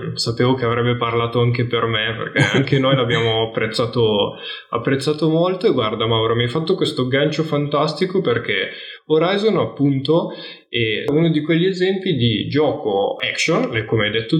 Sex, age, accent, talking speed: male, 10-29, native, 155 wpm